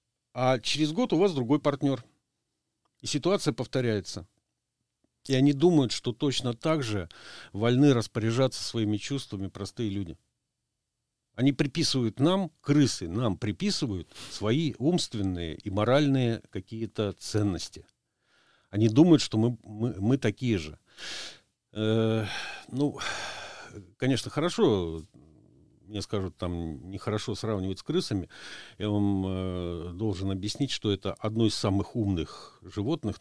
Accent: native